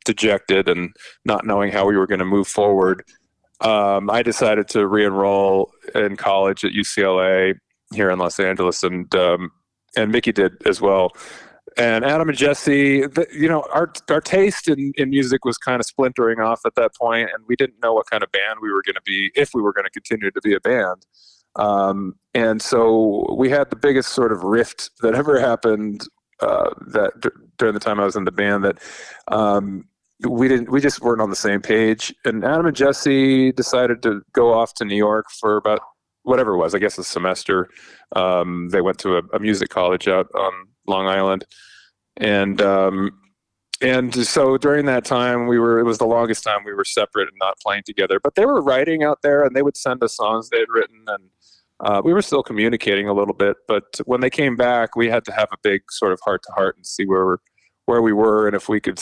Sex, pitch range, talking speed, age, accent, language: male, 100-130 Hz, 215 wpm, 30-49, American, English